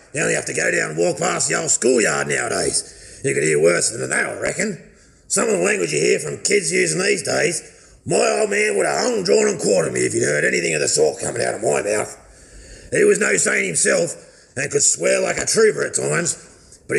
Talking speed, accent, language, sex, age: 240 wpm, Australian, English, male, 40-59